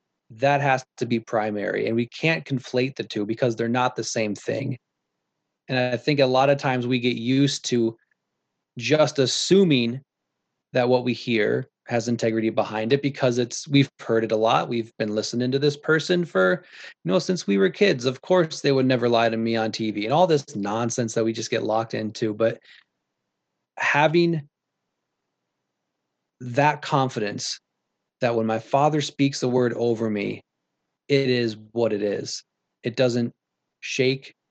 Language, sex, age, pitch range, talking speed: English, male, 20-39, 115-140 Hz, 170 wpm